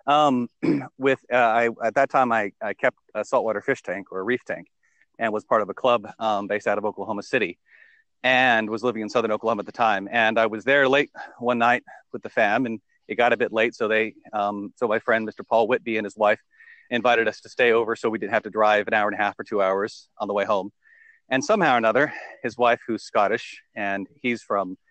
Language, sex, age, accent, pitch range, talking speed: English, male, 40-59, American, 105-135 Hz, 245 wpm